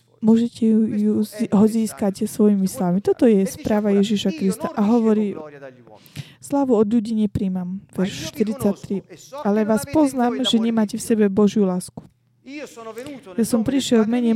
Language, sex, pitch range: Slovak, female, 205-235 Hz